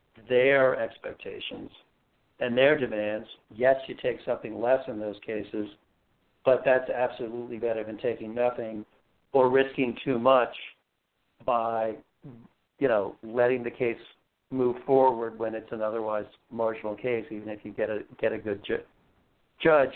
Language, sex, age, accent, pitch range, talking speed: English, male, 60-79, American, 110-130 Hz, 145 wpm